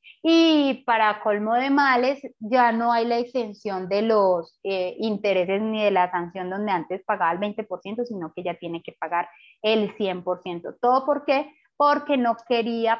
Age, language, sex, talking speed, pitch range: 20-39, Spanish, female, 170 wpm, 190-240 Hz